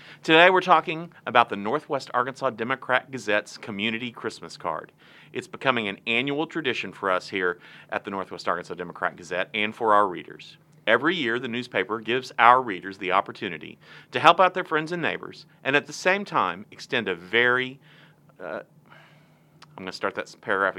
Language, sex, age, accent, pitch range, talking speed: English, male, 40-59, American, 105-155 Hz, 175 wpm